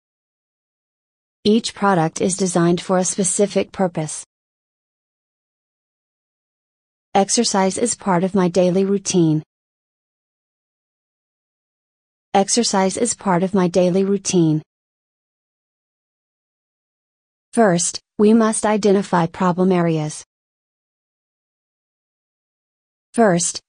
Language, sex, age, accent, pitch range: Japanese, female, 30-49, American, 175-205 Hz